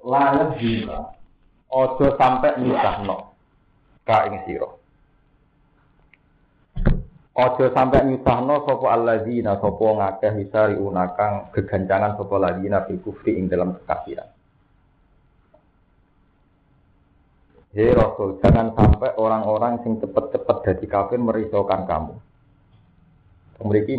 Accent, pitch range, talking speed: native, 100-125 Hz, 90 wpm